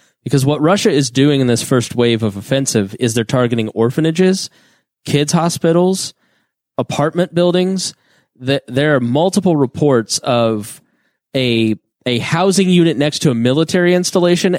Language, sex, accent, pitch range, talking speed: English, male, American, 120-155 Hz, 140 wpm